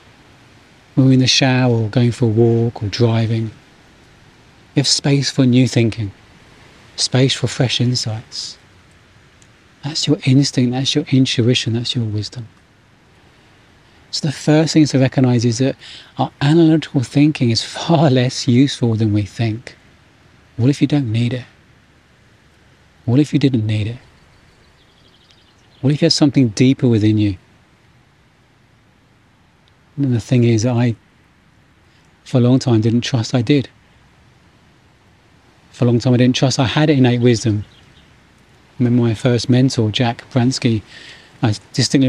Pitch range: 115-135 Hz